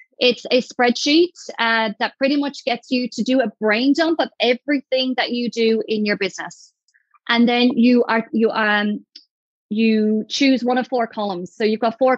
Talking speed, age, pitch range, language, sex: 185 wpm, 30-49, 215-260 Hz, English, female